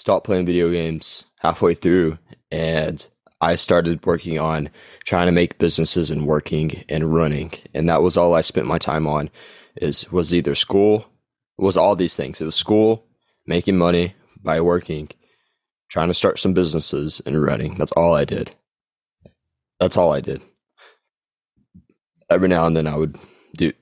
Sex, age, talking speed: male, 20-39, 165 wpm